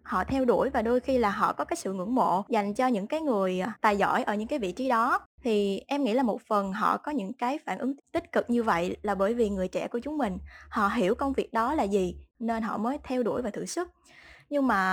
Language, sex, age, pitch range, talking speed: Vietnamese, female, 20-39, 200-265 Hz, 270 wpm